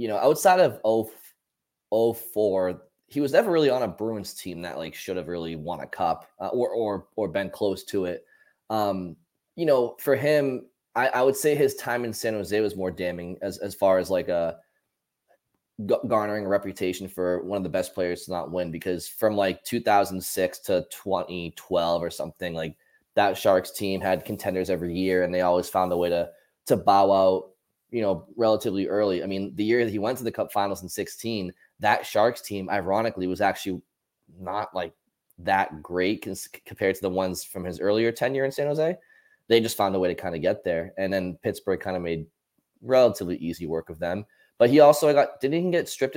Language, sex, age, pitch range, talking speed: English, male, 20-39, 90-120 Hz, 210 wpm